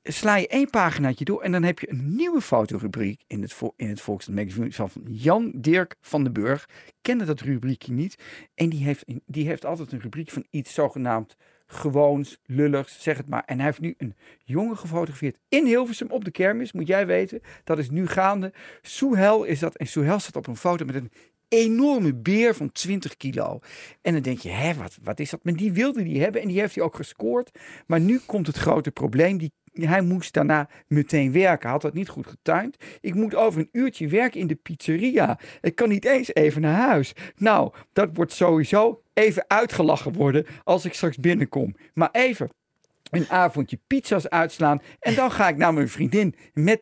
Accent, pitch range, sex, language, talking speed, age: Dutch, 145-200 Hz, male, Dutch, 205 wpm, 50-69